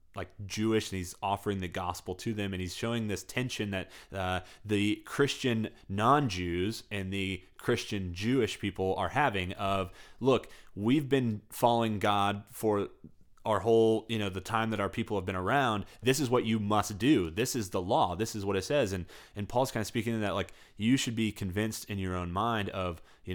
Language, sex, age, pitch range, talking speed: English, male, 20-39, 90-110 Hz, 205 wpm